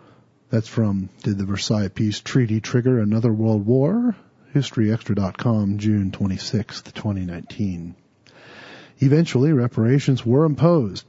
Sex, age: male, 40-59